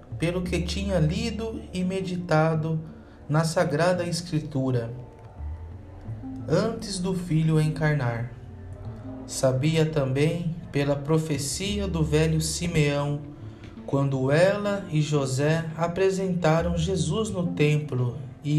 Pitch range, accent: 130-180 Hz, Brazilian